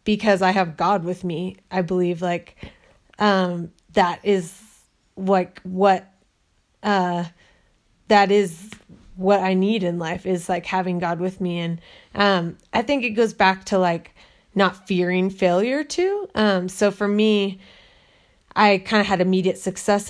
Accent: American